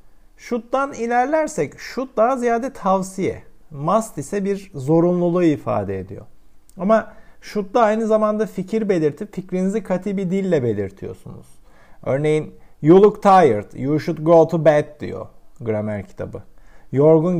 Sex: male